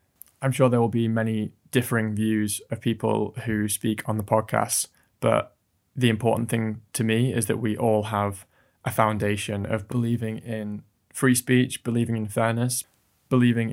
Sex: male